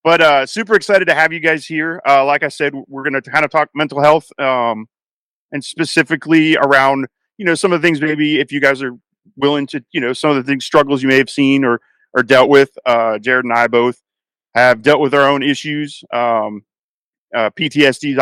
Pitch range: 120-145 Hz